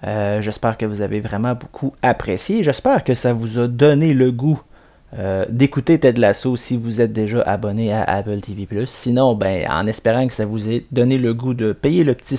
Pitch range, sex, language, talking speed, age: 110-130 Hz, male, French, 210 wpm, 30-49